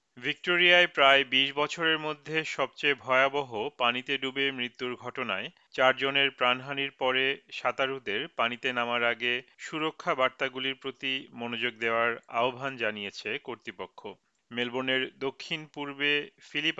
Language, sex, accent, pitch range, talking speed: Bengali, male, native, 125-145 Hz, 105 wpm